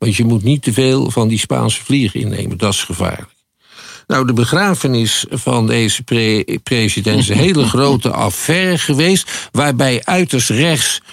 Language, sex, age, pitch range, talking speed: Dutch, male, 50-69, 115-160 Hz, 155 wpm